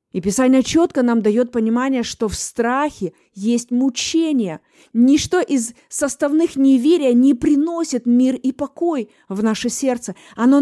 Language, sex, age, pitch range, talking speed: Russian, female, 20-39, 240-305 Hz, 135 wpm